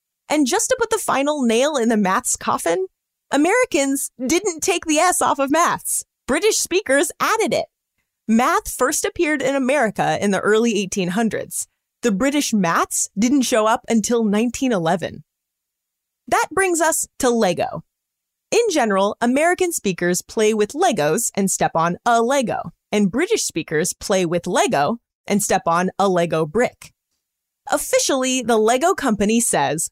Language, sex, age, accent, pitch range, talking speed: English, female, 30-49, American, 195-300 Hz, 150 wpm